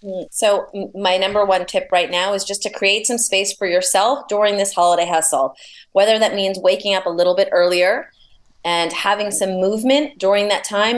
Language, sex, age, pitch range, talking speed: English, female, 30-49, 175-220 Hz, 190 wpm